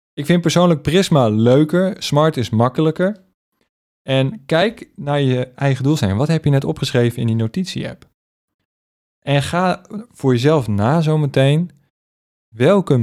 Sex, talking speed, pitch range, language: male, 140 wpm, 105-155 Hz, Dutch